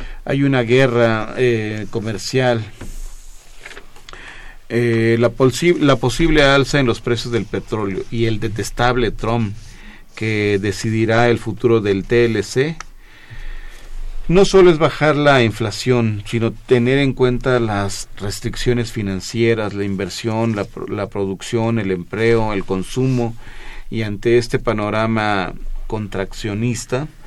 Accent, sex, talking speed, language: Mexican, male, 115 wpm, Spanish